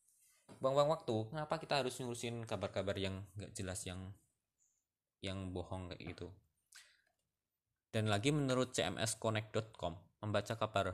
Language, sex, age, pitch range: Malay, male, 20-39, 95-115 Hz